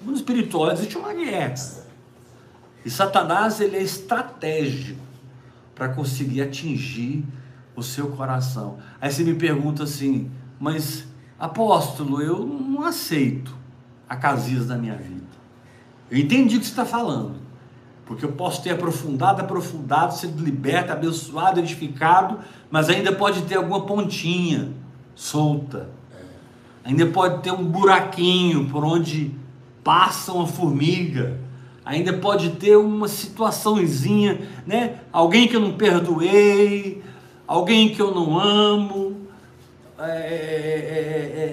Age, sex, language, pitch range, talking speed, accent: 60-79, male, Portuguese, 130-190 Hz, 120 wpm, Brazilian